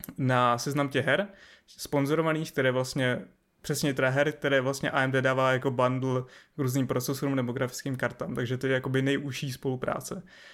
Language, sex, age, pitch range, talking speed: Czech, male, 20-39, 130-145 Hz, 160 wpm